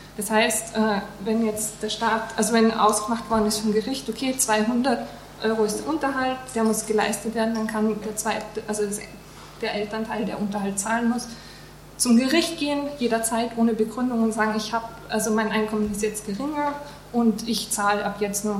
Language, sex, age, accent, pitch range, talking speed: German, female, 20-39, German, 210-230 Hz, 180 wpm